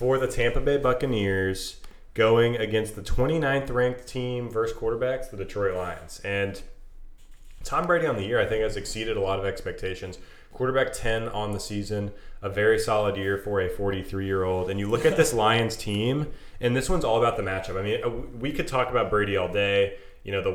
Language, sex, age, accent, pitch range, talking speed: English, male, 20-39, American, 100-120 Hz, 195 wpm